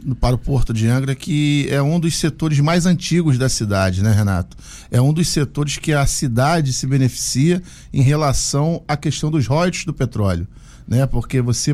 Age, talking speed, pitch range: 50-69, 185 wpm, 125-155 Hz